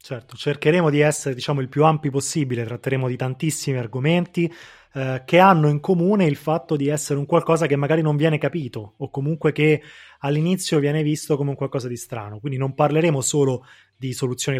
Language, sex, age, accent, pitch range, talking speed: Italian, male, 20-39, native, 130-160 Hz, 190 wpm